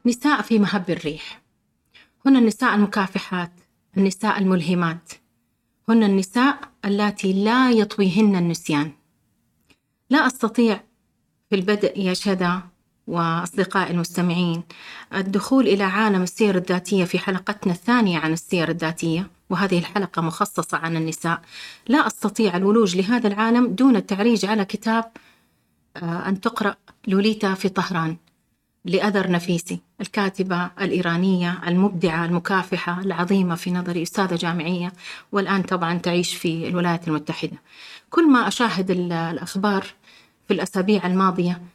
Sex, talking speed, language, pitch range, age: female, 110 wpm, Arabic, 175-210 Hz, 30-49